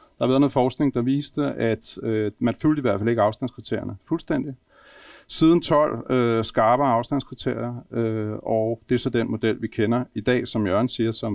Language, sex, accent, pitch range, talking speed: Danish, male, native, 115-140 Hz, 195 wpm